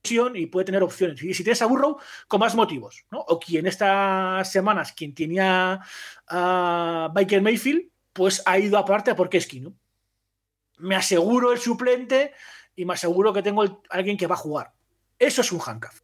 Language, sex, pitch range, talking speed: Spanish, male, 160-200 Hz, 180 wpm